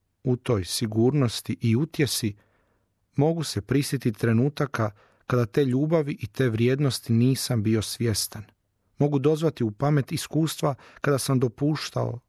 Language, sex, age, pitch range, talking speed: Croatian, male, 40-59, 110-135 Hz, 125 wpm